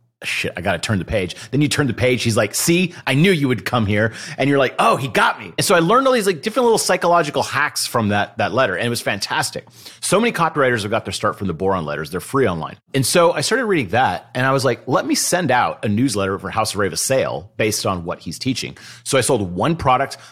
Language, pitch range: English, 100-130 Hz